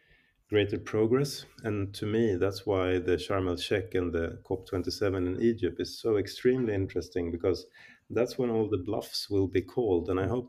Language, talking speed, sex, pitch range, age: Swedish, 190 wpm, male, 95-115 Hz, 30-49